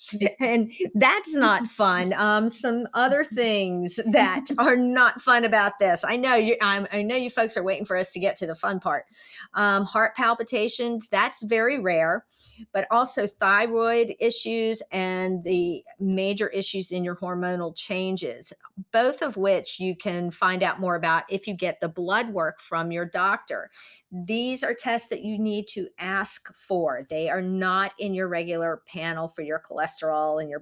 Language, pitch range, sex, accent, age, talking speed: English, 175-225 Hz, female, American, 40-59, 175 wpm